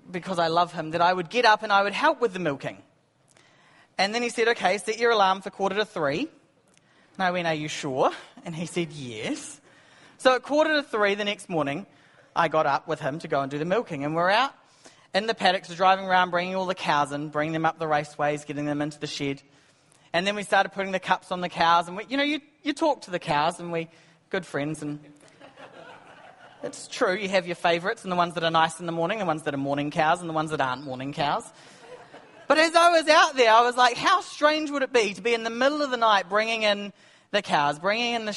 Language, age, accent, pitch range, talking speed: English, 30-49, Australian, 160-225 Hz, 255 wpm